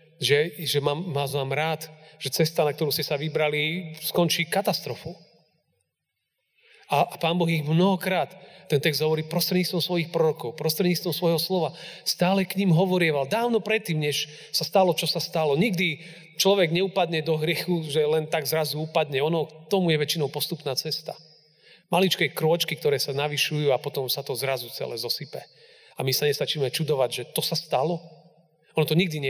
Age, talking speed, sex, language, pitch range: 40-59, 170 wpm, male, Slovak, 150-180 Hz